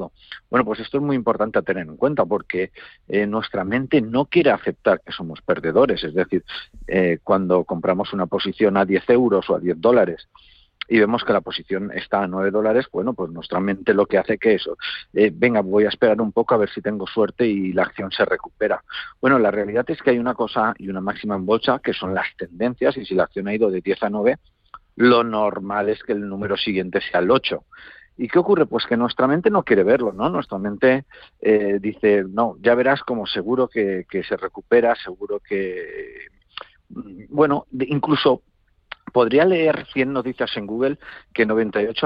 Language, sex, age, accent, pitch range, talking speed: Spanish, male, 50-69, Spanish, 100-130 Hz, 205 wpm